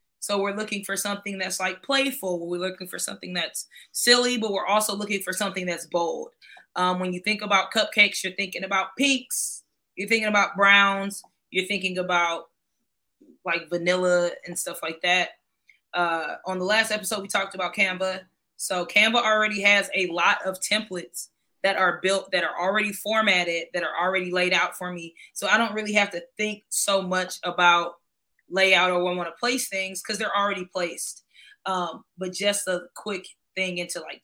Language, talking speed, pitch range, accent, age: English, 185 wpm, 180-205 Hz, American, 20-39